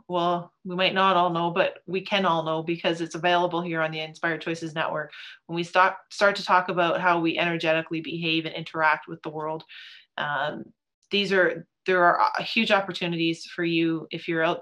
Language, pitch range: English, 165-185 Hz